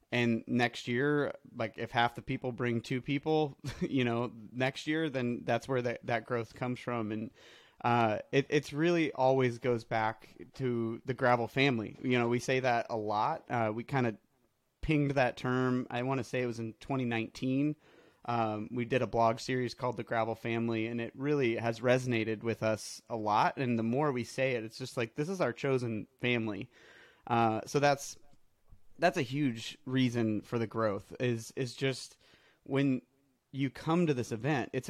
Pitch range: 115-135 Hz